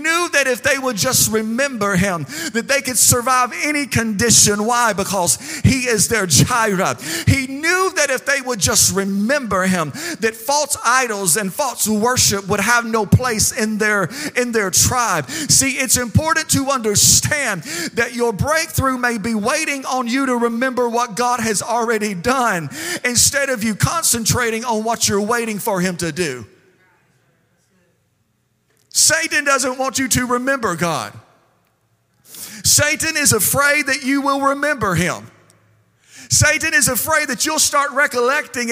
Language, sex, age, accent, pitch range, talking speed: English, male, 40-59, American, 215-280 Hz, 150 wpm